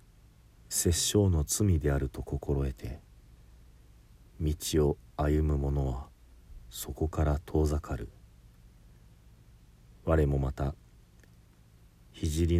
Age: 40-59